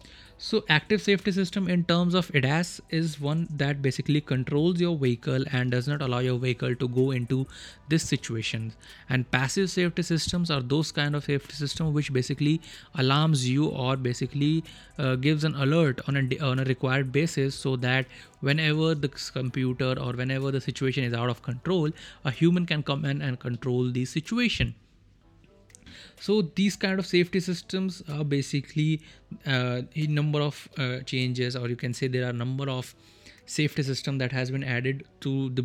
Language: English